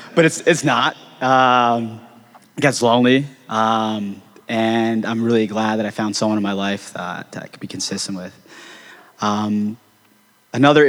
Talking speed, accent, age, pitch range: 160 wpm, American, 20-39, 110-135 Hz